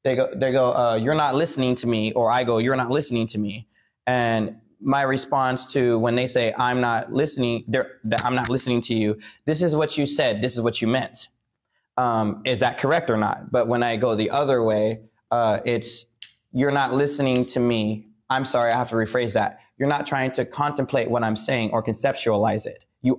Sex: male